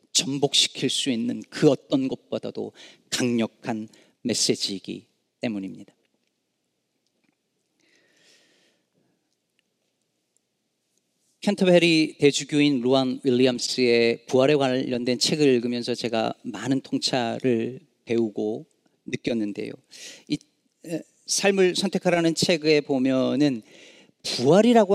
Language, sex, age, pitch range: Korean, male, 40-59, 130-195 Hz